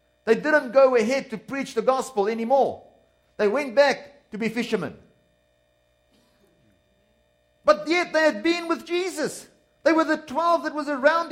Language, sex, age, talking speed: English, male, 50-69, 155 wpm